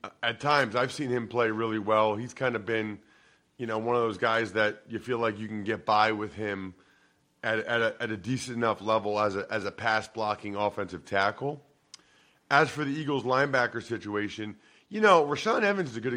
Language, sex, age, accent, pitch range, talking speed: English, male, 40-59, American, 110-140 Hz, 210 wpm